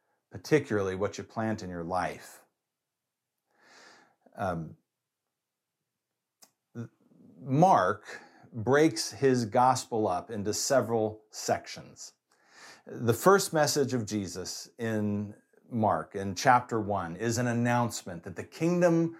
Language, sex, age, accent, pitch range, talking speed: English, male, 50-69, American, 110-145 Hz, 100 wpm